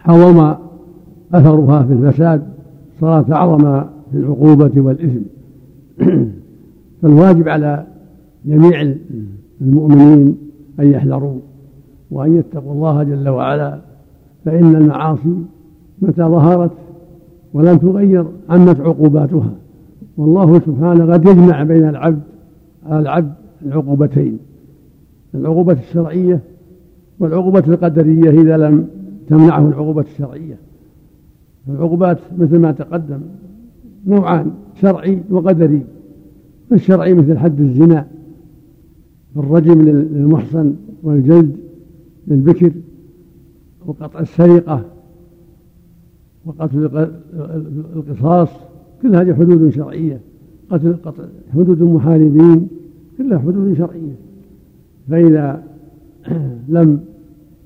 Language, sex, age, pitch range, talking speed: Arabic, male, 60-79, 150-170 Hz, 80 wpm